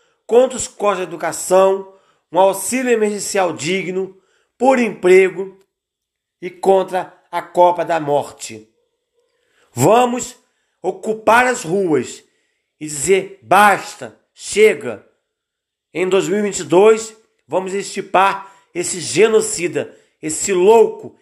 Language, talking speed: Portuguese, 95 wpm